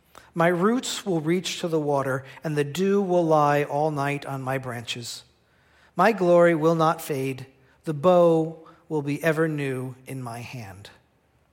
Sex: male